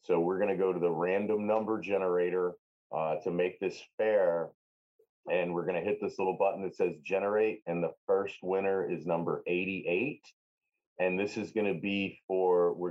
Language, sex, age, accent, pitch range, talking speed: English, male, 30-49, American, 90-115 Hz, 175 wpm